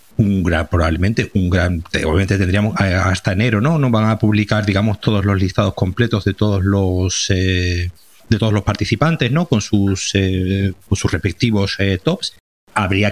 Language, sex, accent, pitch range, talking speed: Spanish, male, Spanish, 95-120 Hz, 170 wpm